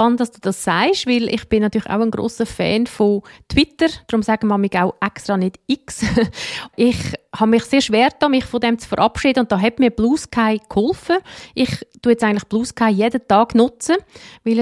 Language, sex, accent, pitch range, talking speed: German, female, Swiss, 200-245 Hz, 195 wpm